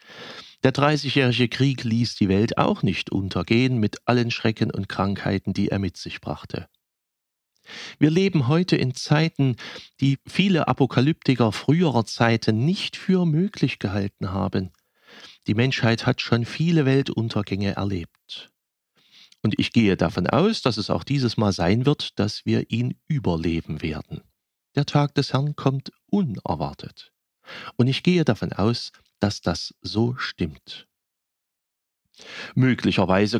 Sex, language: male, German